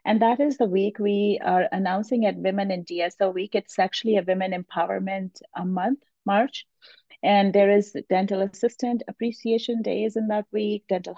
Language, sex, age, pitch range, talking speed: English, female, 30-49, 190-225 Hz, 175 wpm